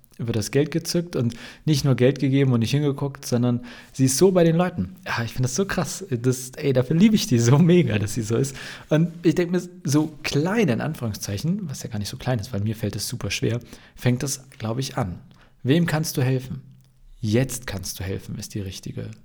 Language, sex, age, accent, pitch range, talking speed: German, male, 40-59, German, 110-140 Hz, 230 wpm